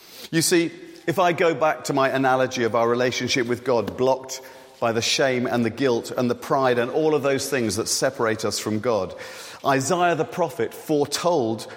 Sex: male